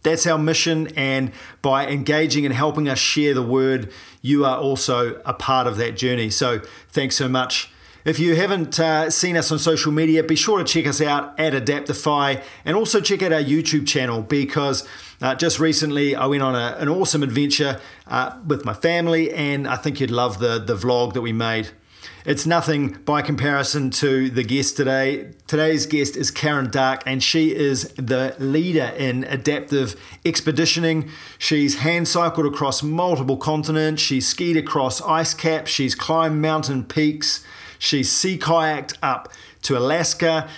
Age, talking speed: 40-59, 170 wpm